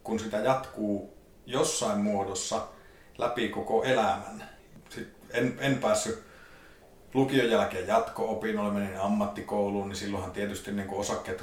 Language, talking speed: Finnish, 125 wpm